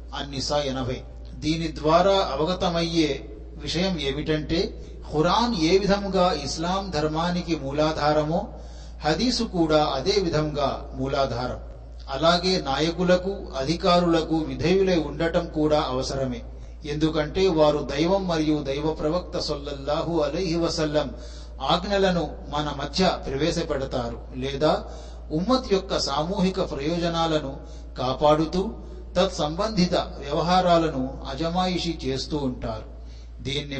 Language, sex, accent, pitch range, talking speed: Telugu, male, native, 140-180 Hz, 85 wpm